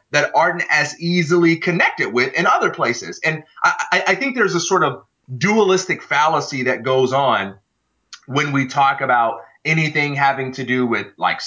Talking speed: 170 wpm